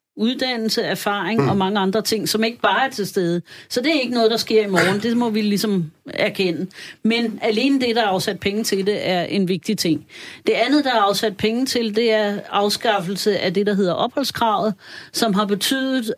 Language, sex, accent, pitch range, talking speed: Danish, female, native, 185-225 Hz, 210 wpm